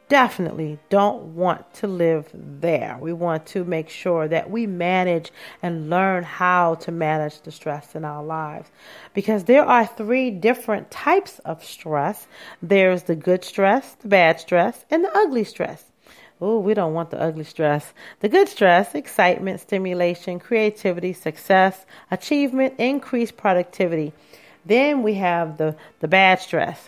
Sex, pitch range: female, 170-215 Hz